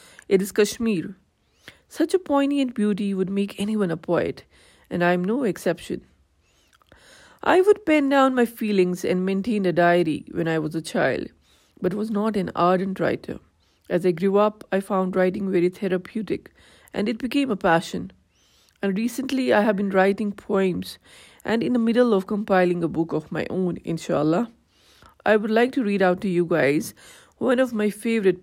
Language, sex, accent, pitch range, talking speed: English, female, Indian, 180-235 Hz, 175 wpm